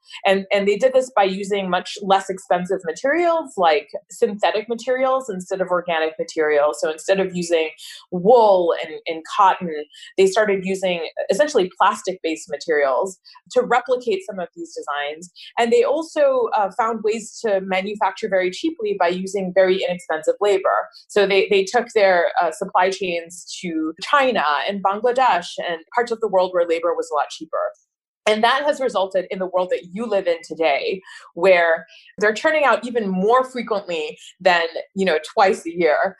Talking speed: 165 wpm